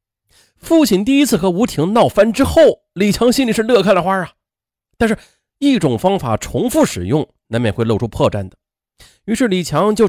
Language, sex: Chinese, male